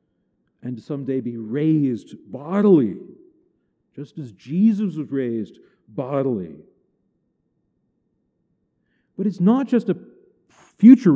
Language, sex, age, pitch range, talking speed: English, male, 50-69, 160-235 Hz, 90 wpm